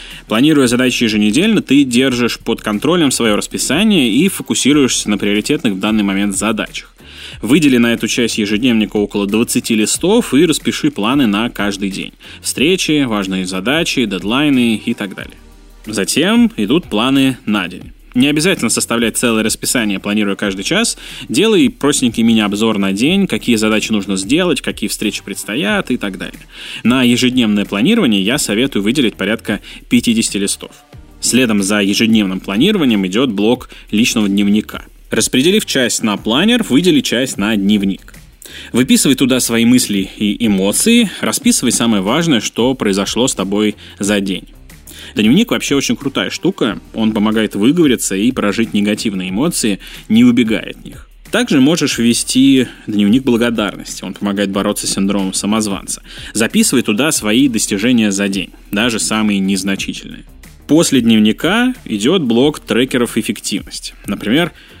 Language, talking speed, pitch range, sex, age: Russian, 140 wpm, 100-130 Hz, male, 20-39